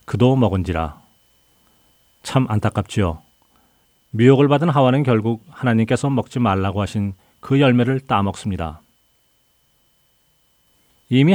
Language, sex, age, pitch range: Korean, male, 40-59, 100-130 Hz